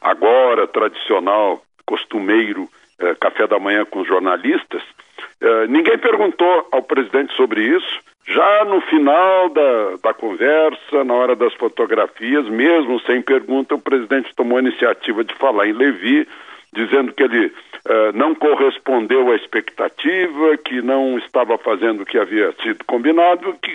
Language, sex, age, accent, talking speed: Portuguese, male, 60-79, Brazilian, 140 wpm